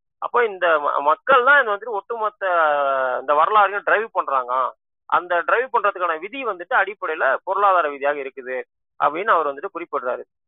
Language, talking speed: Tamil, 135 wpm